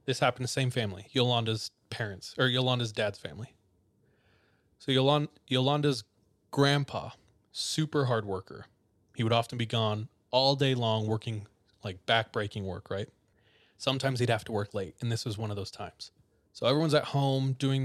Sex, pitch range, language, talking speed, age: male, 105-125 Hz, English, 170 wpm, 20-39